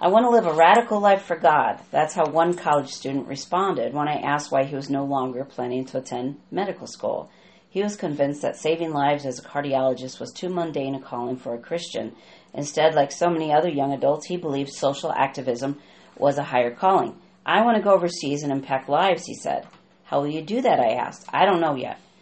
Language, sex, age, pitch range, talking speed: English, female, 40-59, 135-165 Hz, 220 wpm